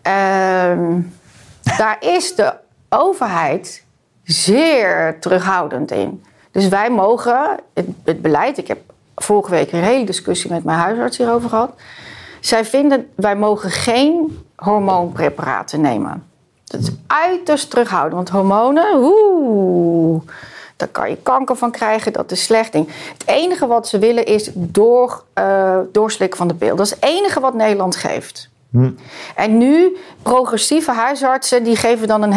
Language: Dutch